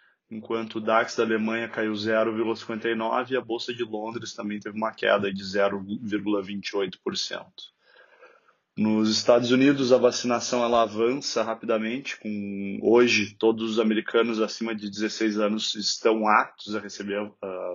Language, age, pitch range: Portuguese, 20-39, 105-120 Hz